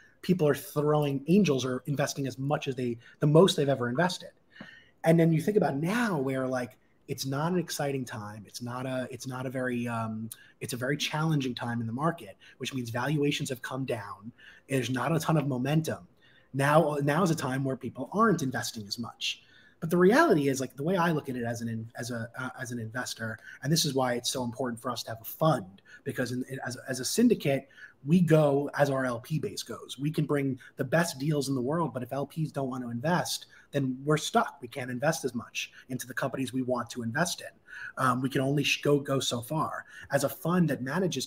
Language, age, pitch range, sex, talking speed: English, 30-49, 125-150 Hz, male, 235 wpm